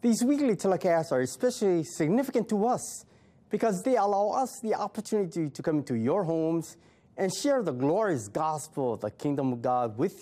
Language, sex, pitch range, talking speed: English, male, 130-200 Hz, 175 wpm